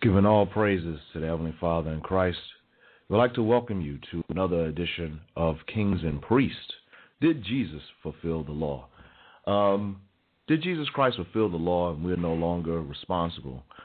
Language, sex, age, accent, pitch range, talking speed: English, male, 40-59, American, 85-105 Hz, 165 wpm